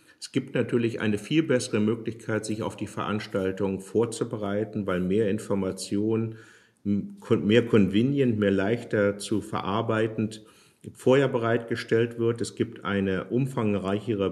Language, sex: German, male